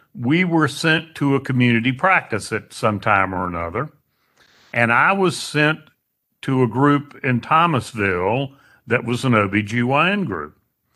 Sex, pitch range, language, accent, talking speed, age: male, 105-145 Hz, English, American, 165 wpm, 60-79